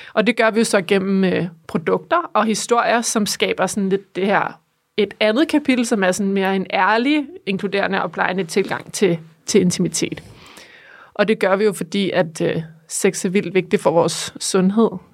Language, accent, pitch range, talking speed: Danish, native, 185-220 Hz, 190 wpm